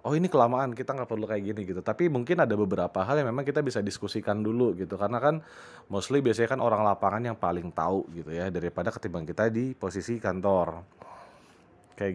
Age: 30-49